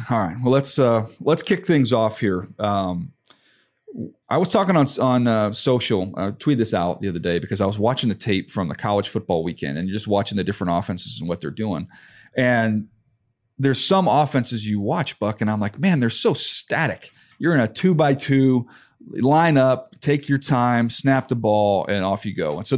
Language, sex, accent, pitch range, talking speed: English, male, American, 105-145 Hz, 210 wpm